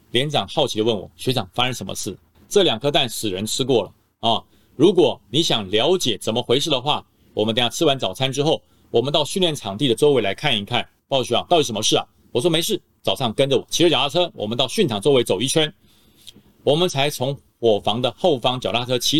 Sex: male